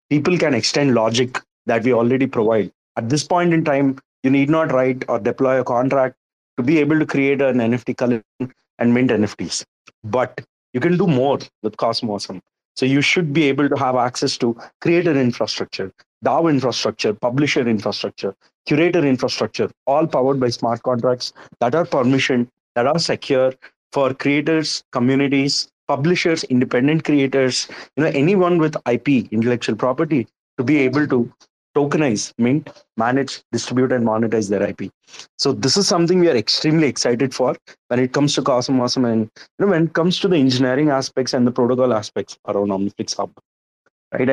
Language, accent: English, Indian